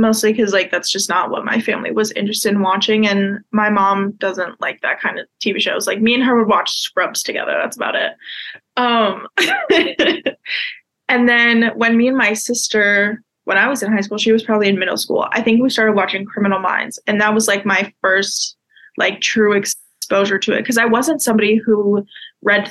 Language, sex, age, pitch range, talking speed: English, female, 20-39, 205-235 Hz, 205 wpm